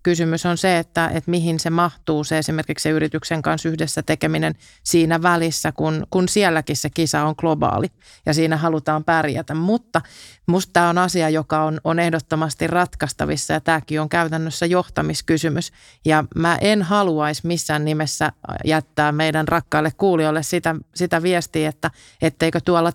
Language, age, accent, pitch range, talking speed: Finnish, 30-49, native, 155-175 Hz, 155 wpm